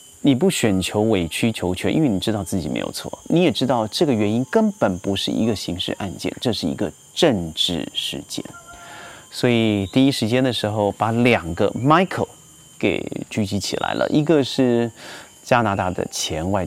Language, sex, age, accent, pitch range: Chinese, male, 30-49, native, 100-135 Hz